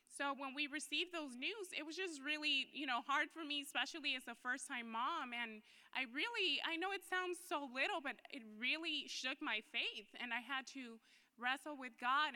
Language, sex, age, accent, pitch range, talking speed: English, female, 20-39, American, 235-295 Hz, 210 wpm